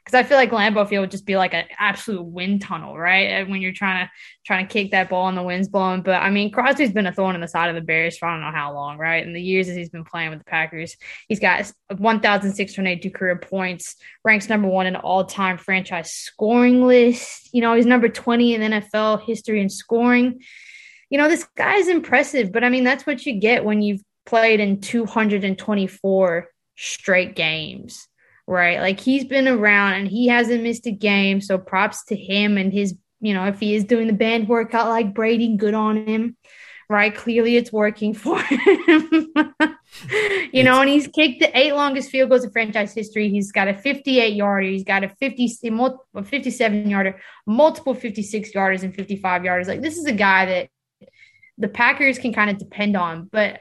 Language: English